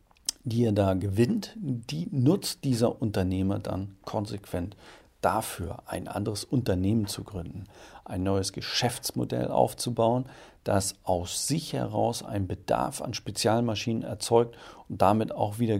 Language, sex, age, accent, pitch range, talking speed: German, male, 40-59, German, 95-120 Hz, 125 wpm